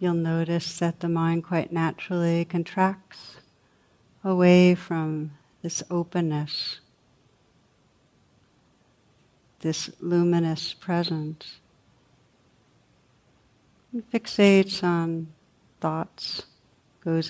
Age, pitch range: 60-79, 155-180 Hz